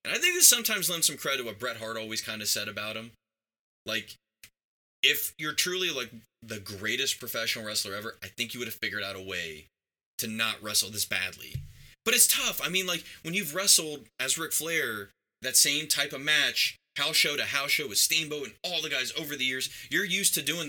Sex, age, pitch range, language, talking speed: male, 20-39, 105-155 Hz, English, 220 wpm